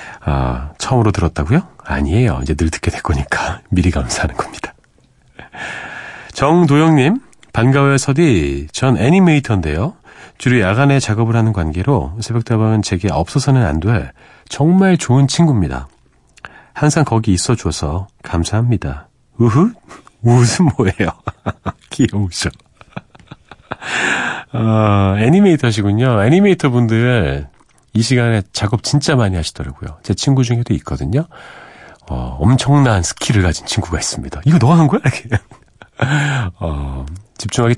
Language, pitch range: Korean, 90-135 Hz